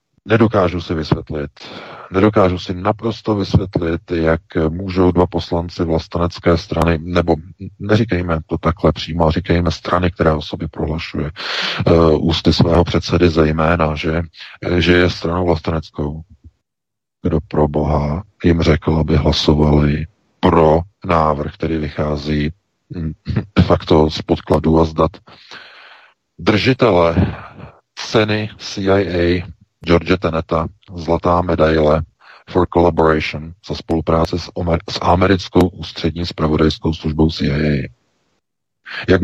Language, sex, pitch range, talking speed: Czech, male, 80-105 Hz, 105 wpm